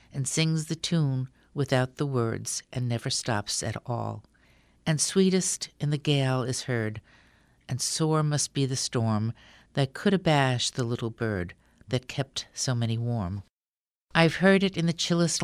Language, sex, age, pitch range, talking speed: English, female, 60-79, 120-160 Hz, 165 wpm